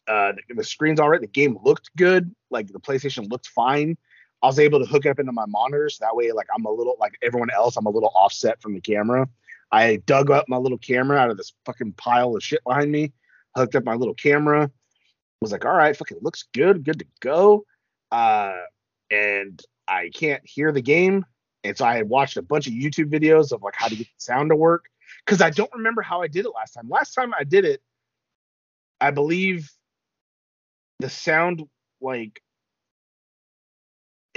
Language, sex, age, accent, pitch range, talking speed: English, male, 30-49, American, 125-185 Hz, 205 wpm